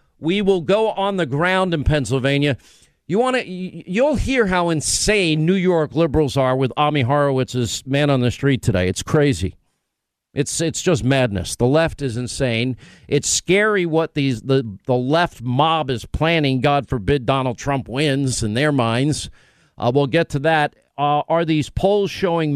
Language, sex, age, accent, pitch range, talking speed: English, male, 50-69, American, 130-170 Hz, 170 wpm